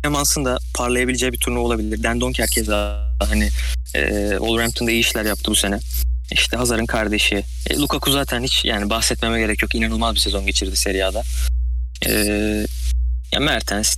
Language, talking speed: Turkish, 150 wpm